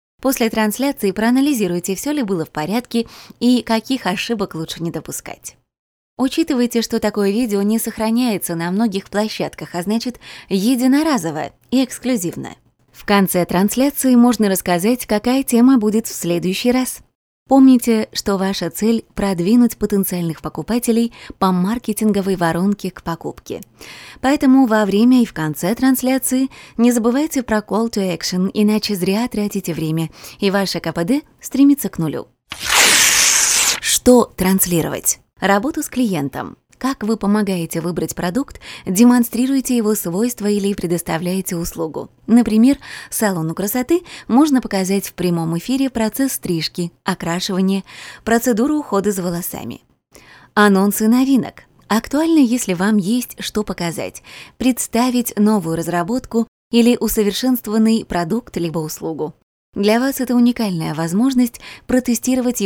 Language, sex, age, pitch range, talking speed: Russian, female, 20-39, 185-245 Hz, 125 wpm